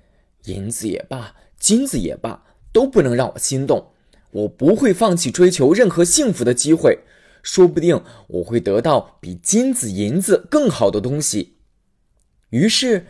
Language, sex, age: Chinese, male, 20-39